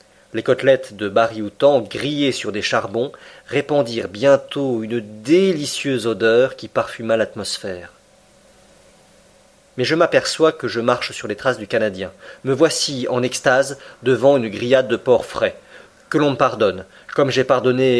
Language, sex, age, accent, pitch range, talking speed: French, male, 40-59, French, 120-175 Hz, 145 wpm